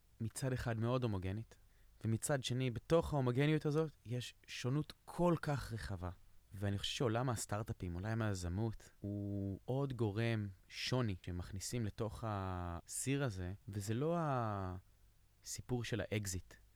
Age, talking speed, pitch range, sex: 20-39, 120 wpm, 95-115 Hz, male